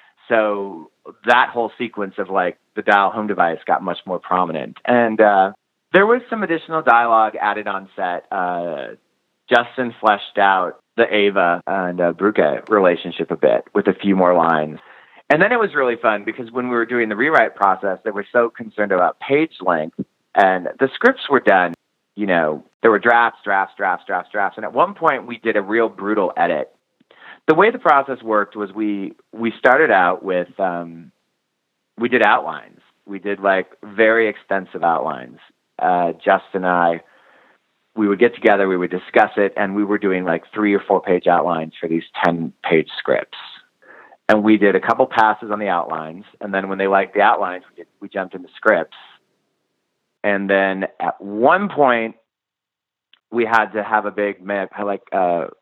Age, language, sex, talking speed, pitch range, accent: 30-49, English, male, 185 wpm, 95-115 Hz, American